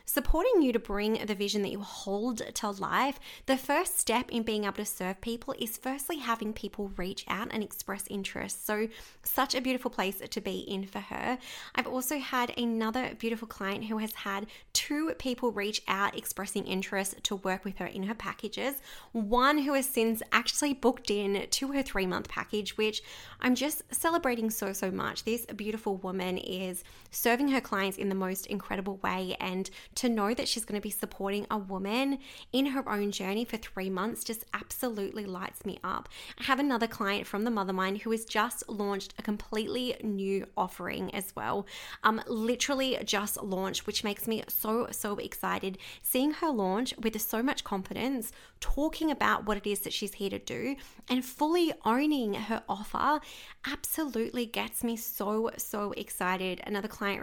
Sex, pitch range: female, 200-250 Hz